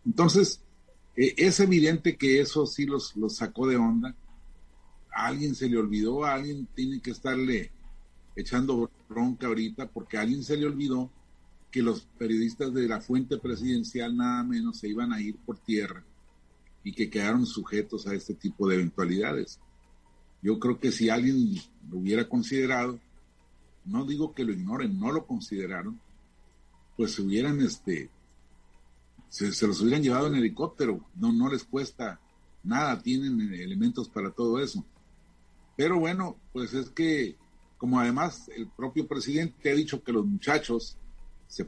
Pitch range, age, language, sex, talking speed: 100-150 Hz, 50-69, Spanish, male, 155 wpm